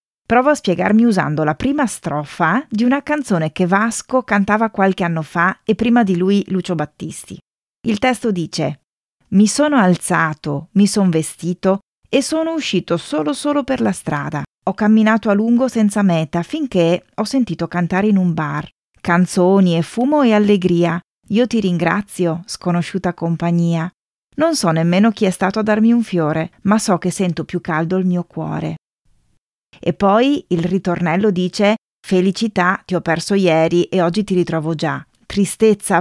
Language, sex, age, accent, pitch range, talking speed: Italian, female, 30-49, native, 165-215 Hz, 160 wpm